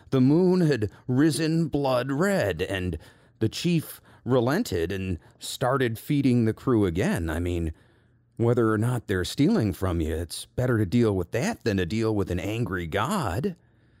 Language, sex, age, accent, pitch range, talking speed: English, male, 40-59, American, 95-120 Hz, 165 wpm